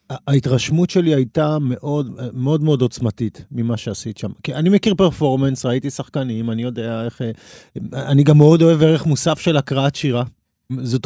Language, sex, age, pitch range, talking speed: Hebrew, male, 40-59, 115-140 Hz, 155 wpm